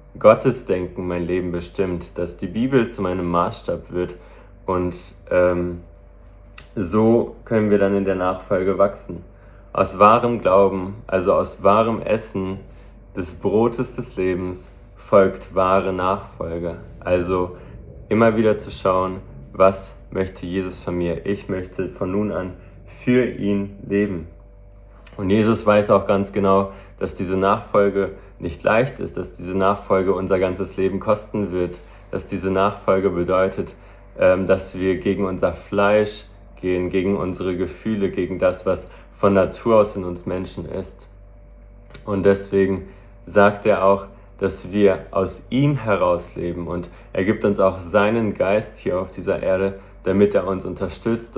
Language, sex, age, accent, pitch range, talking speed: German, male, 20-39, German, 90-100 Hz, 140 wpm